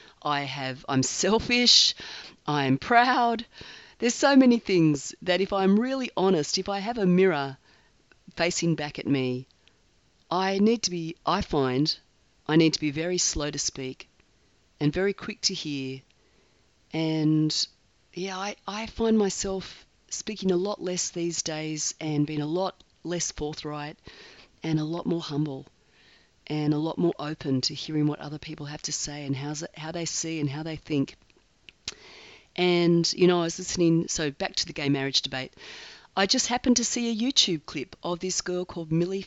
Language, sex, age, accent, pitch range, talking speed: English, female, 40-59, Australian, 150-195 Hz, 175 wpm